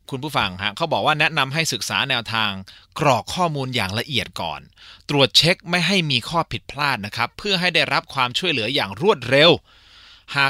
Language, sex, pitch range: Thai, male, 115-165 Hz